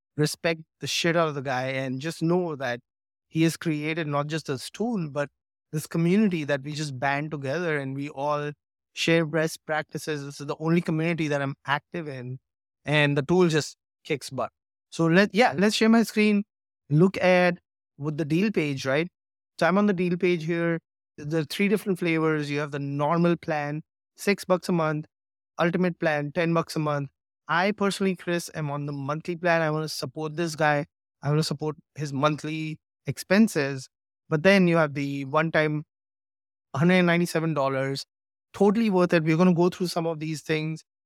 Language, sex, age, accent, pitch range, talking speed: English, male, 20-39, Indian, 145-170 Hz, 185 wpm